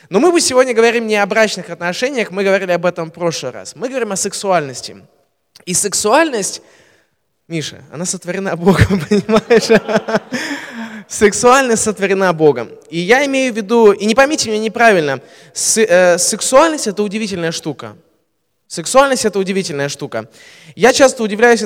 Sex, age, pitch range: male, 20-39, 175-235 Hz